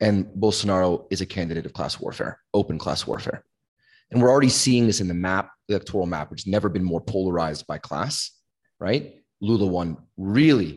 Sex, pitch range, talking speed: male, 85-110 Hz, 185 wpm